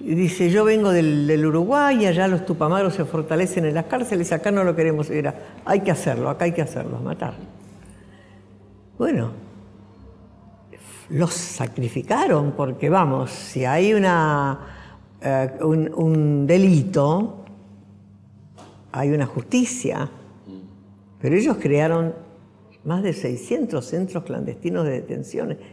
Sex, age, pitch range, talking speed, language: female, 60-79, 125-175 Hz, 125 wpm, Spanish